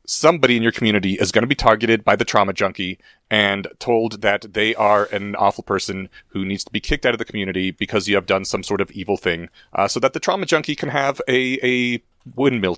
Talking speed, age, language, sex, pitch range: 235 wpm, 30-49, English, male, 105-150 Hz